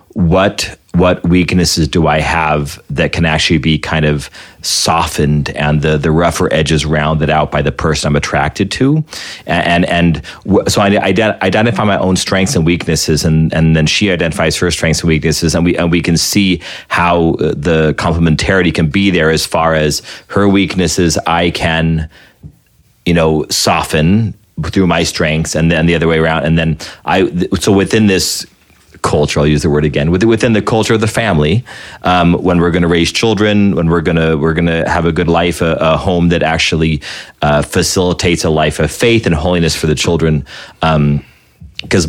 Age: 30-49